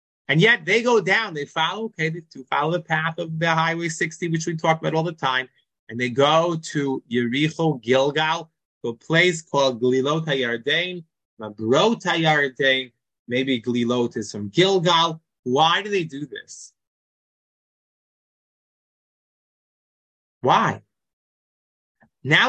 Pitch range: 135-180 Hz